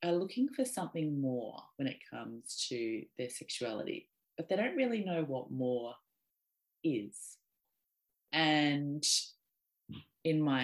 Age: 30-49